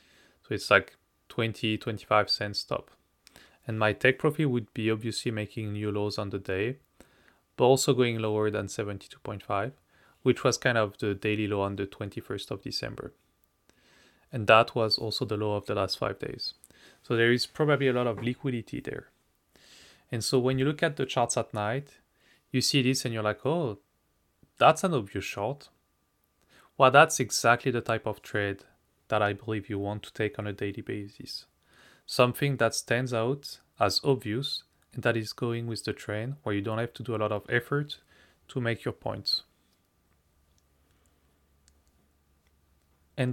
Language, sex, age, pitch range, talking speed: English, male, 30-49, 100-130 Hz, 170 wpm